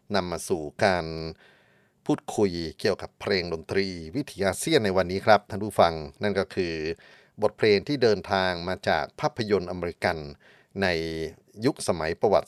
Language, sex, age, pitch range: Thai, male, 30-49, 85-105 Hz